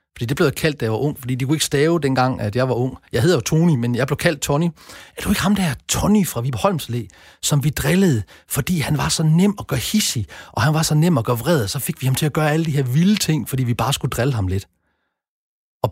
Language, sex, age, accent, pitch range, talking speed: Danish, male, 40-59, native, 115-160 Hz, 285 wpm